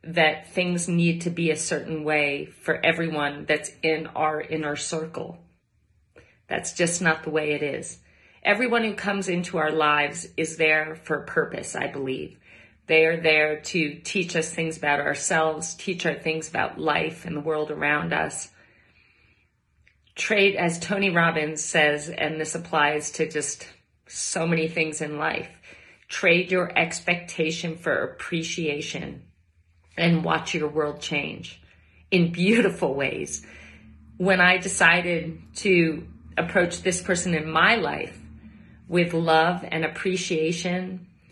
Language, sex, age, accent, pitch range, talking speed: English, female, 40-59, American, 150-175 Hz, 140 wpm